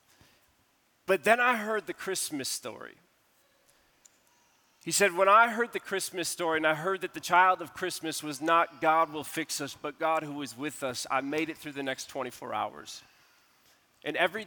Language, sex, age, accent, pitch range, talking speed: English, male, 40-59, American, 130-160 Hz, 185 wpm